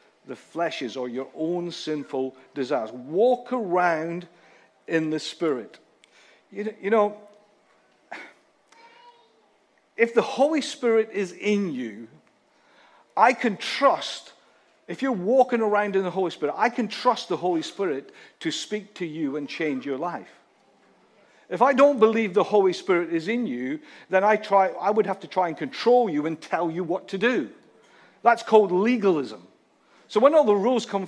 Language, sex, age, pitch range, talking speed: English, male, 50-69, 175-235 Hz, 160 wpm